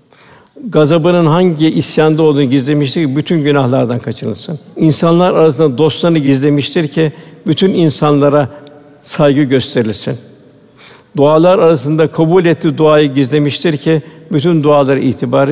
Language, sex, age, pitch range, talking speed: Turkish, male, 60-79, 140-160 Hz, 110 wpm